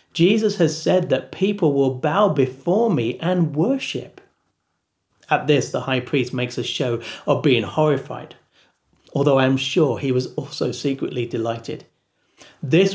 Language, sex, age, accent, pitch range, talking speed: English, male, 40-59, British, 125-175 Hz, 145 wpm